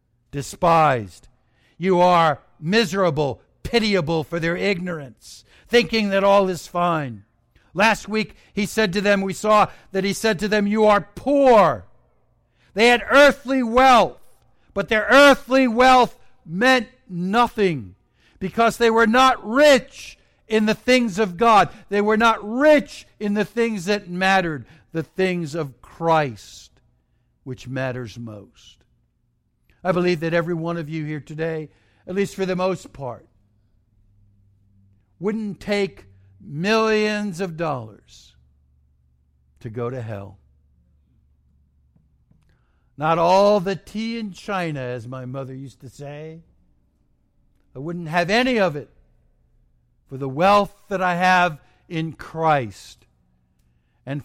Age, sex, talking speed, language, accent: 60-79, male, 130 wpm, English, American